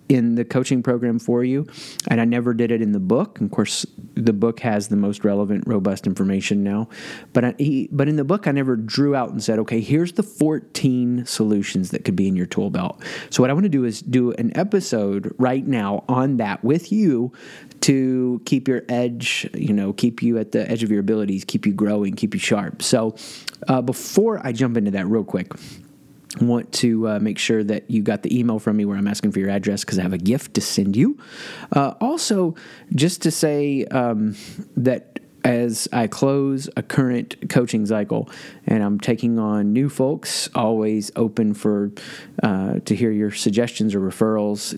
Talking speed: 205 wpm